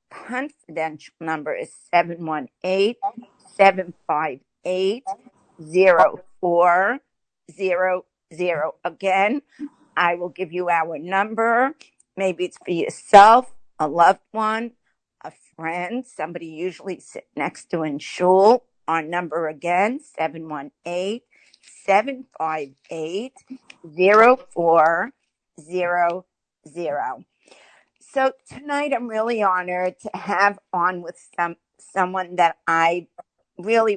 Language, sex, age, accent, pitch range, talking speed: English, female, 50-69, American, 175-225 Hz, 80 wpm